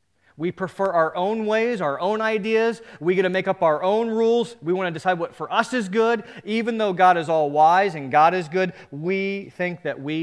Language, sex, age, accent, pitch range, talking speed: English, male, 40-59, American, 125-205 Hz, 230 wpm